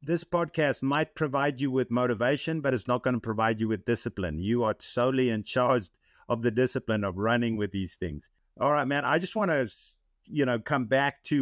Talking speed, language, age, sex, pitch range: 215 wpm, English, 50-69, male, 115-150 Hz